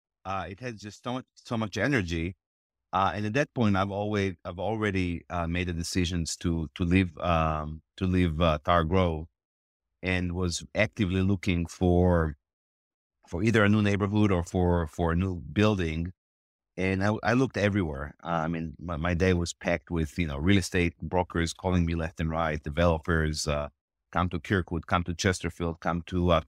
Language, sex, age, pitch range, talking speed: English, male, 30-49, 80-100 Hz, 185 wpm